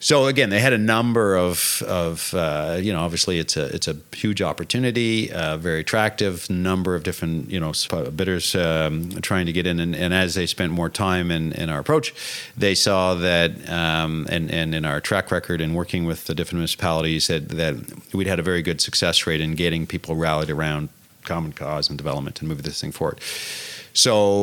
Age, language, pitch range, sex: 40-59, English, 80-95 Hz, male